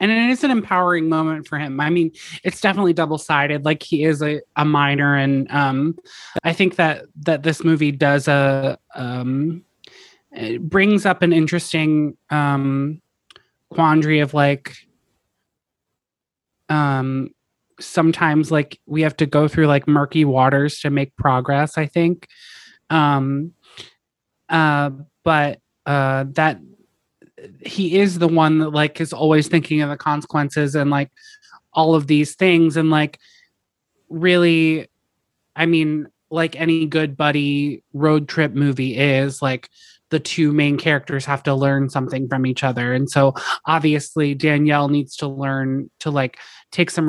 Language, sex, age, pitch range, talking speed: English, male, 20-39, 140-160 Hz, 145 wpm